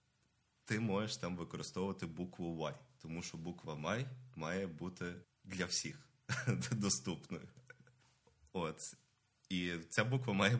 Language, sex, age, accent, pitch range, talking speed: Ukrainian, male, 20-39, native, 90-125 Hz, 115 wpm